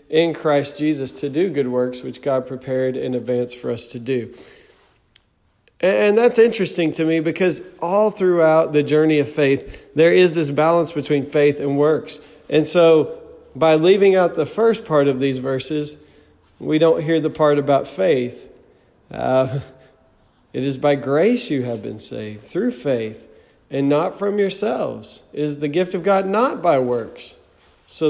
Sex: male